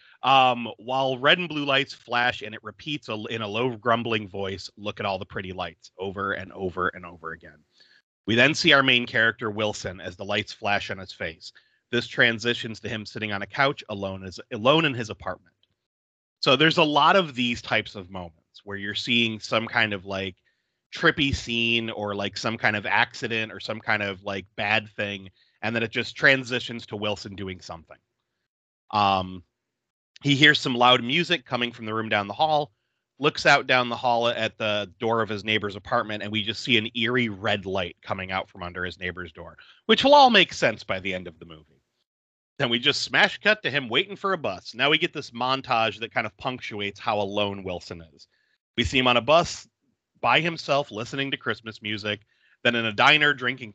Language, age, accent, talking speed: English, 30-49, American, 210 wpm